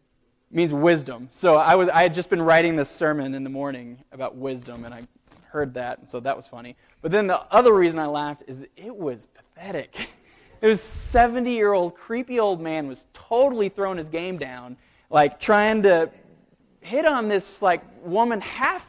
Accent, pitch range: American, 155-215 Hz